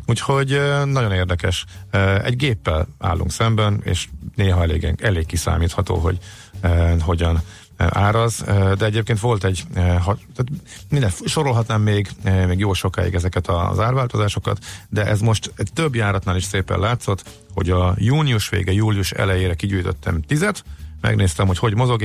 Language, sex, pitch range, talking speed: Hungarian, male, 90-110 Hz, 140 wpm